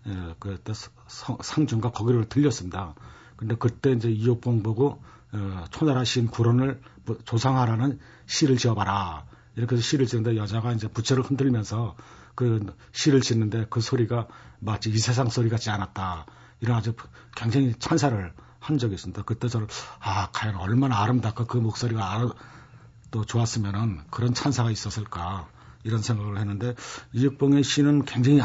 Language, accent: Korean, native